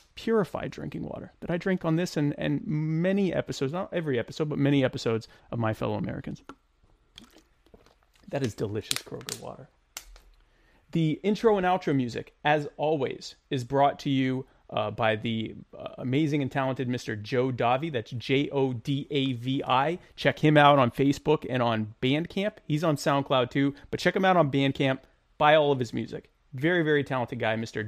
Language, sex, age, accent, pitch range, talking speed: English, male, 30-49, American, 125-165 Hz, 170 wpm